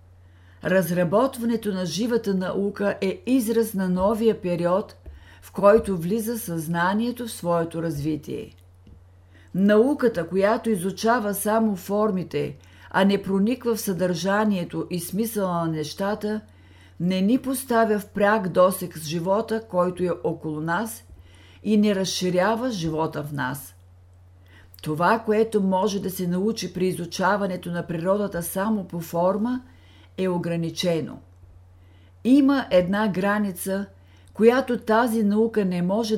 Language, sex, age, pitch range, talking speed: Bulgarian, female, 50-69, 155-210 Hz, 120 wpm